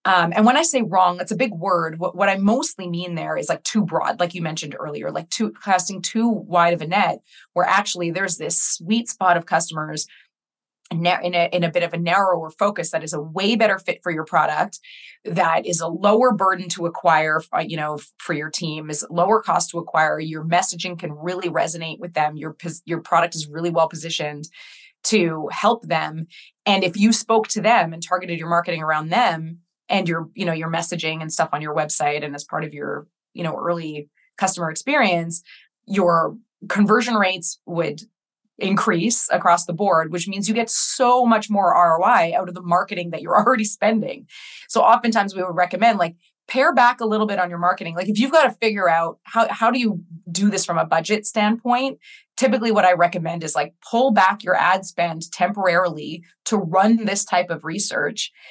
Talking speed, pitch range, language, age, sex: 205 wpm, 165-210 Hz, English, 20-39, female